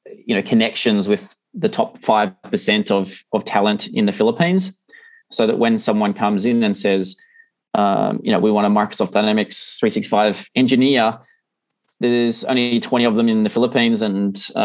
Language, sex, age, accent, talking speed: English, male, 20-39, Australian, 165 wpm